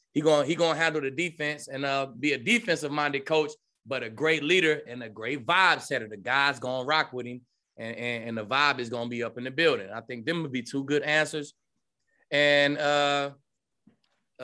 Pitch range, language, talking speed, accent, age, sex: 135-165 Hz, English, 215 wpm, American, 20-39, male